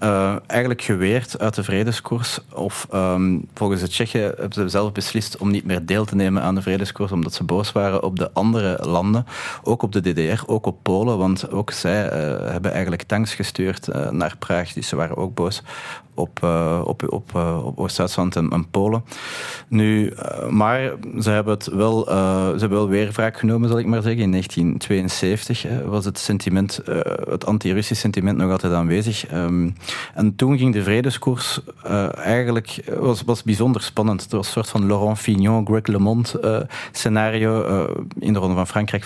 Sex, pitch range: male, 95-115 Hz